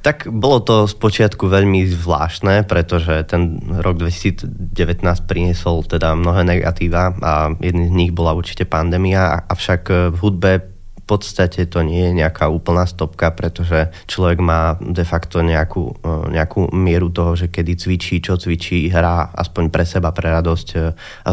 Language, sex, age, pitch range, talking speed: Slovak, male, 20-39, 85-95 Hz, 150 wpm